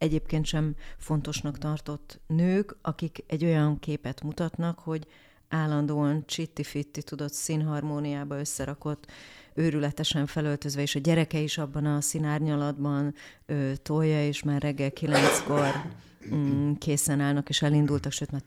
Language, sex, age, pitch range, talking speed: Hungarian, female, 30-49, 145-160 Hz, 115 wpm